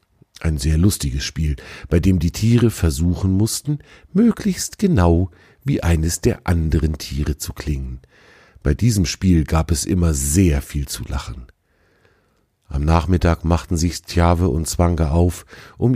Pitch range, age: 80-105 Hz, 50-69